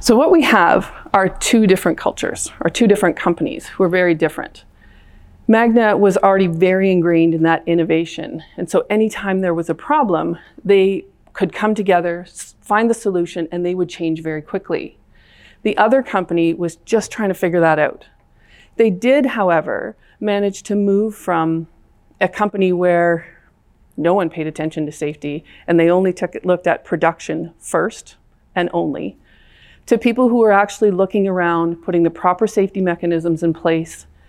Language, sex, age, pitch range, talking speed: English, female, 40-59, 165-210 Hz, 165 wpm